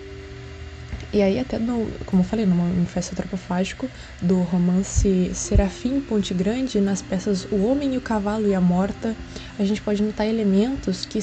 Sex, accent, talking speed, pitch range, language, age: female, Brazilian, 165 wpm, 185-230 Hz, Portuguese, 20-39